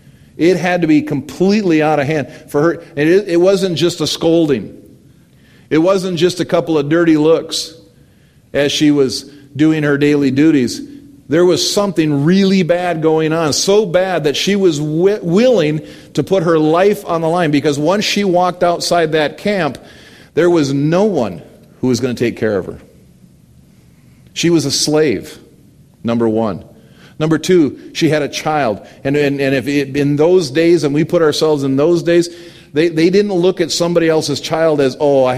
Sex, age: male, 40-59